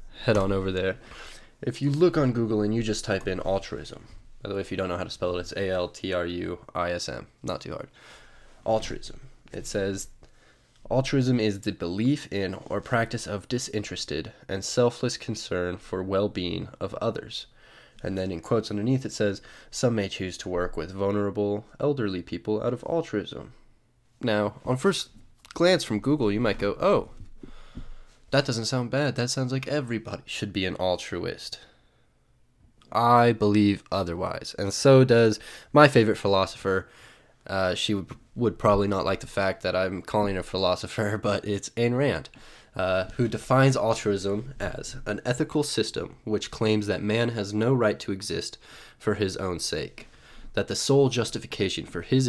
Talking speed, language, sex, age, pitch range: 165 wpm, English, male, 20-39, 95-120 Hz